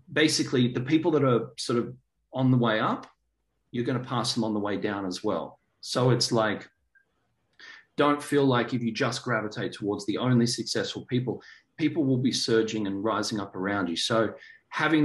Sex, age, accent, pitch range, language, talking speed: male, 40-59, Australian, 105-130 Hz, English, 190 wpm